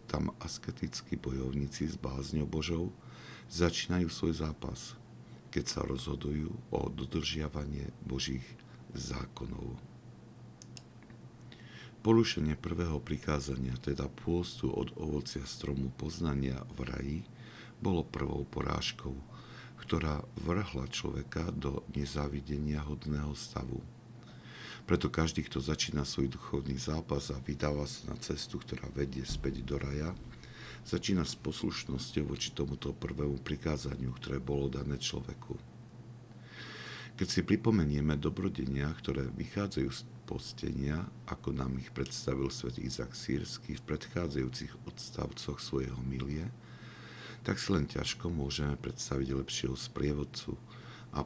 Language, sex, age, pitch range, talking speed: Slovak, male, 50-69, 65-80 Hz, 110 wpm